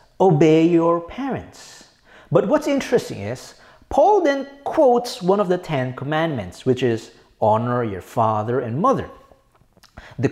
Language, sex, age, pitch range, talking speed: English, male, 40-59, 135-230 Hz, 135 wpm